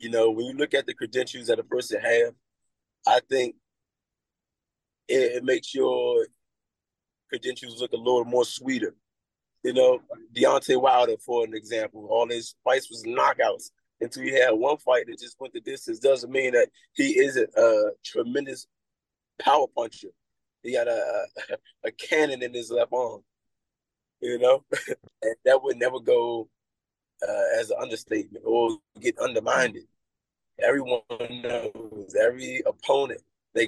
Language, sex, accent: English, male, American